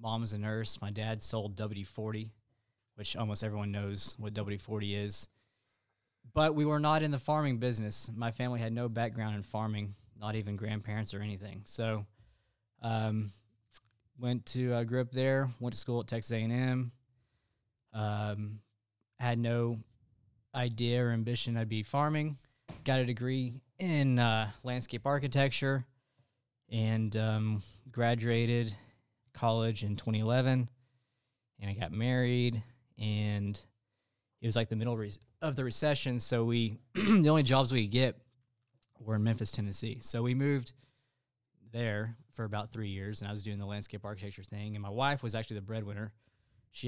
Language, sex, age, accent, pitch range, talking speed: English, male, 20-39, American, 110-125 Hz, 160 wpm